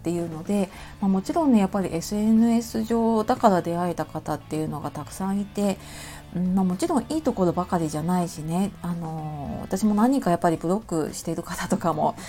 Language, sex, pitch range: Japanese, female, 170-235 Hz